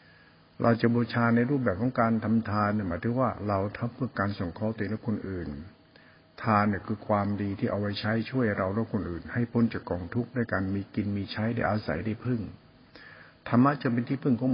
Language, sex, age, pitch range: Thai, male, 60-79, 100-120 Hz